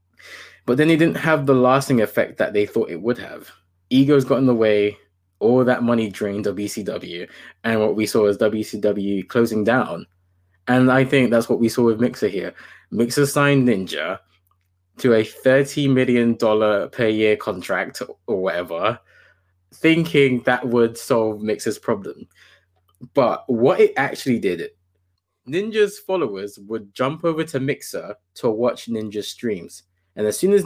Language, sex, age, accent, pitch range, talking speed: English, male, 20-39, British, 95-135 Hz, 160 wpm